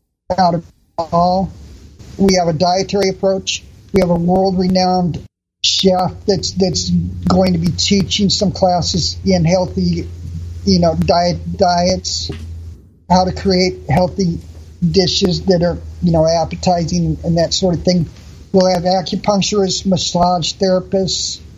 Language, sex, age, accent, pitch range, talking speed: English, male, 50-69, American, 150-190 Hz, 135 wpm